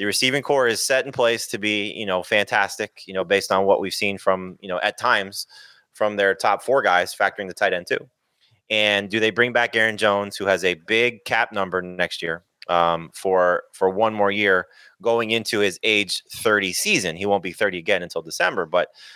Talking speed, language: 215 wpm, English